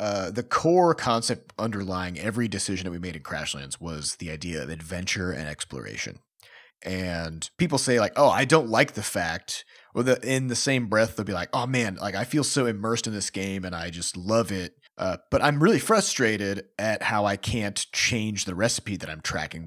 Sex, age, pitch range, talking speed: male, 30-49, 90-120 Hz, 200 wpm